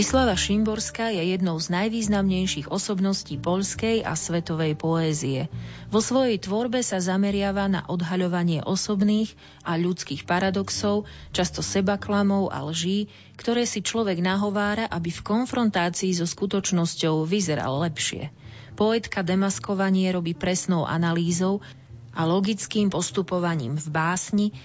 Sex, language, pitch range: female, Slovak, 160-205 Hz